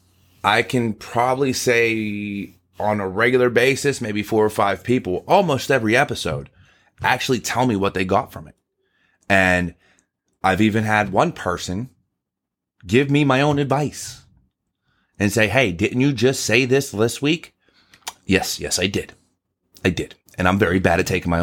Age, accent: 30-49, American